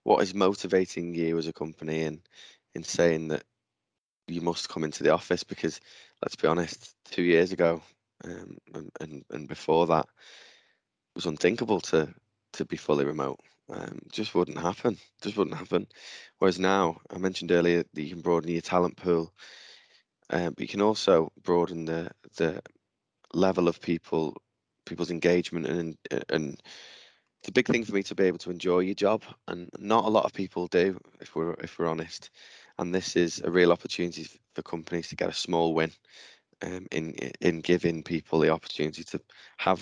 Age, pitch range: 20-39, 80-90 Hz